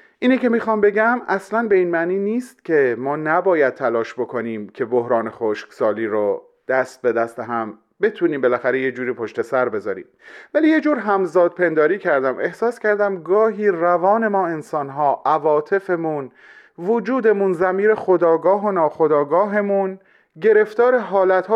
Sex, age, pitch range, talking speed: male, 30-49, 150-215 Hz, 135 wpm